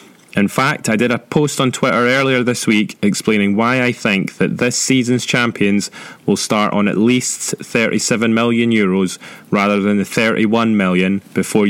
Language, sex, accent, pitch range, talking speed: English, male, British, 105-135 Hz, 170 wpm